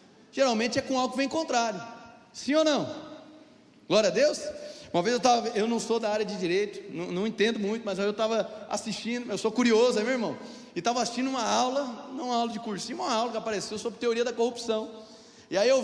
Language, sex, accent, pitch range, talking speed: Portuguese, male, Brazilian, 225-285 Hz, 220 wpm